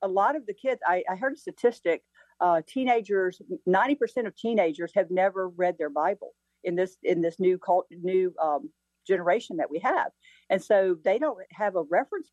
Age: 50-69